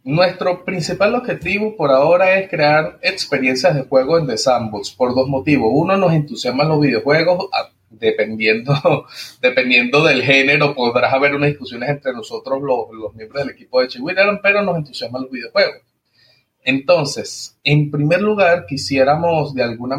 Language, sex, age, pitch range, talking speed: Spanish, male, 30-49, 125-160 Hz, 155 wpm